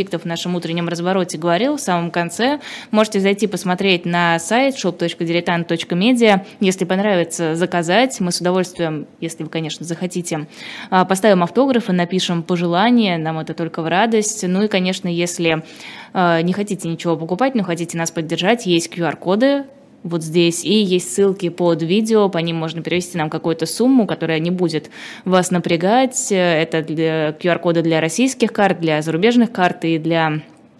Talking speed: 150 wpm